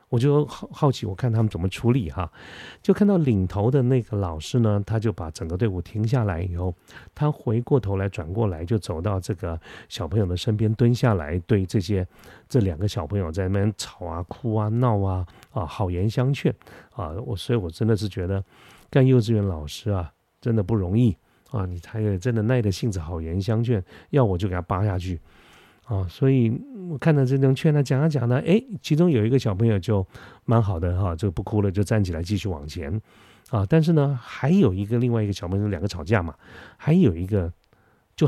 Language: Chinese